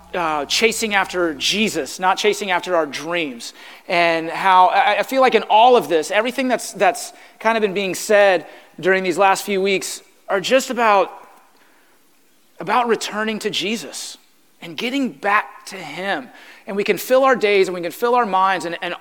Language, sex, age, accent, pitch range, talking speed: English, male, 30-49, American, 175-220 Hz, 180 wpm